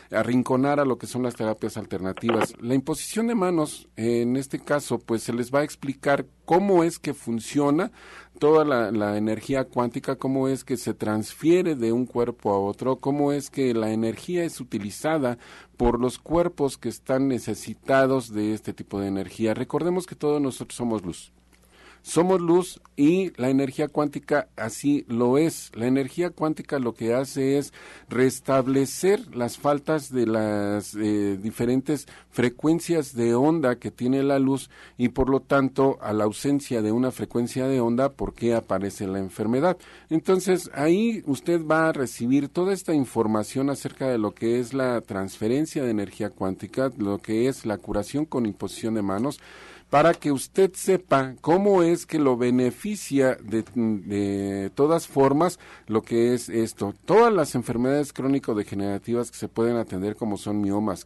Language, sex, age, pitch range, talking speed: Spanish, male, 40-59, 110-145 Hz, 165 wpm